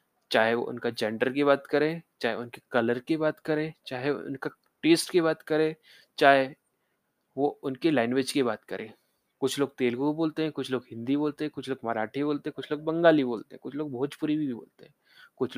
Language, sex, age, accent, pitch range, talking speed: Hindi, male, 20-39, native, 125-155 Hz, 210 wpm